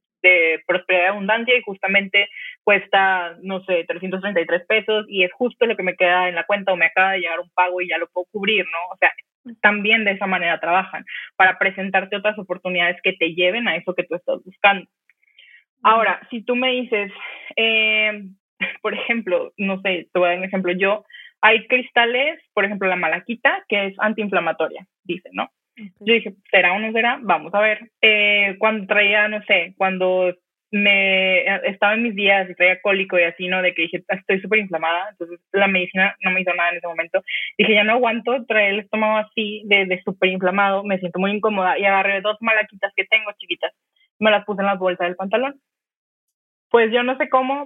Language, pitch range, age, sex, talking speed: Spanish, 185-215 Hz, 20-39, female, 200 wpm